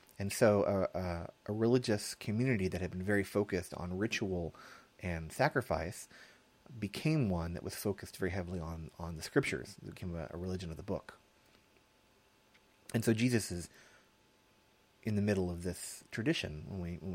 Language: English